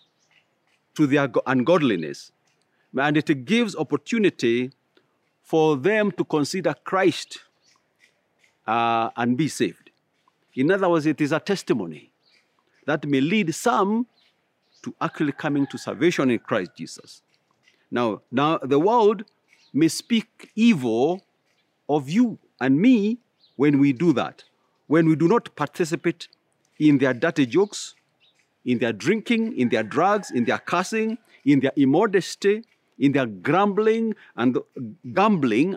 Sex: male